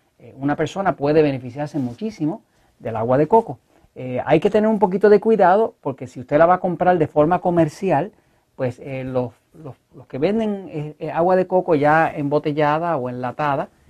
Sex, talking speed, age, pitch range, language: male, 175 wpm, 40-59, 125-165 Hz, Spanish